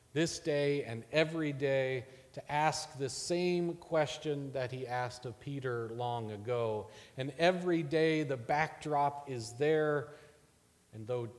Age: 40-59